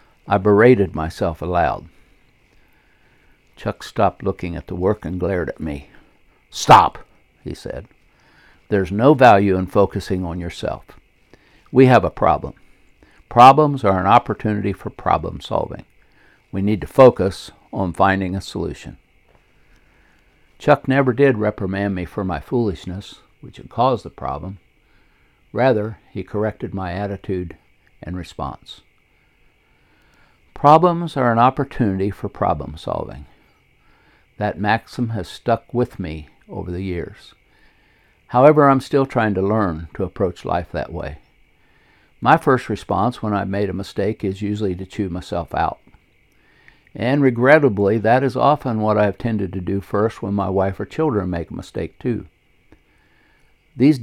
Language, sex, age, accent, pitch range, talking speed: English, male, 60-79, American, 95-120 Hz, 140 wpm